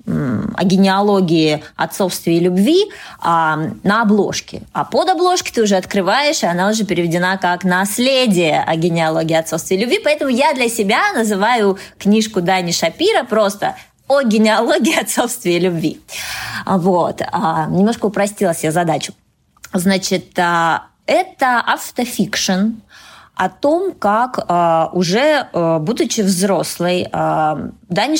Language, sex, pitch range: Russian, female, 170-230 Hz